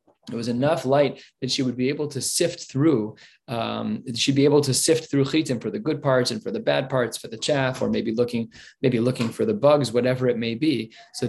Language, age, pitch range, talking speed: English, 20-39, 115-140 Hz, 240 wpm